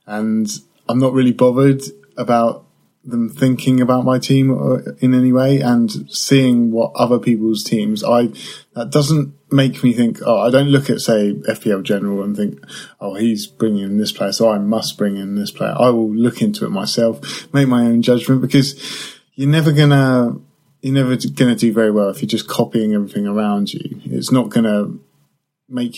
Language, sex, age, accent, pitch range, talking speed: English, male, 20-39, British, 105-130 Hz, 190 wpm